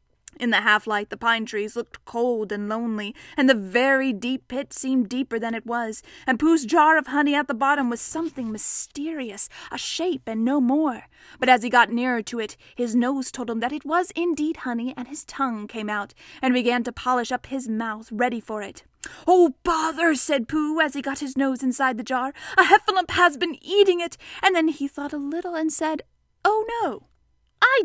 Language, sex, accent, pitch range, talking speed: English, female, American, 230-310 Hz, 210 wpm